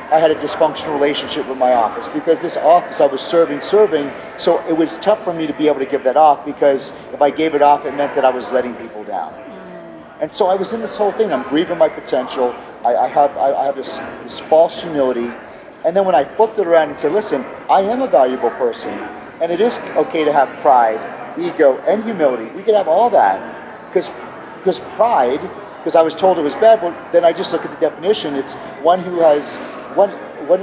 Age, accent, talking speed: 40-59, American, 230 wpm